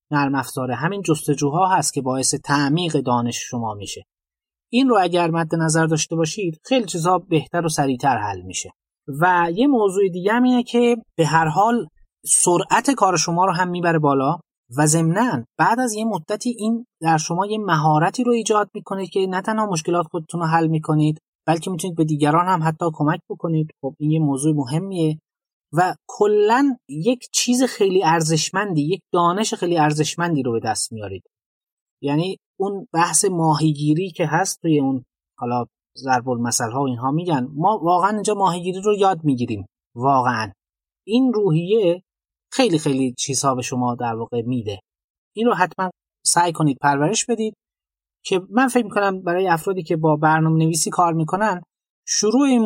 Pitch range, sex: 145-195 Hz, male